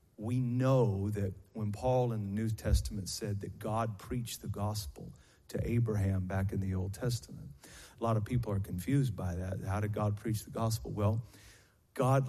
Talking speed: 185 wpm